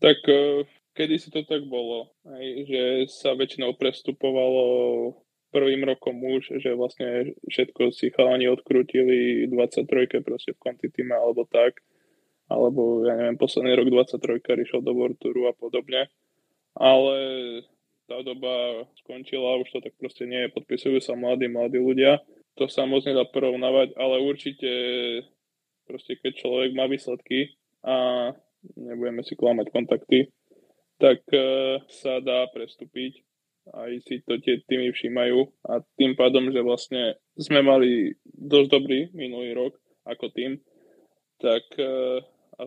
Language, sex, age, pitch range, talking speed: Slovak, male, 10-29, 125-135 Hz, 130 wpm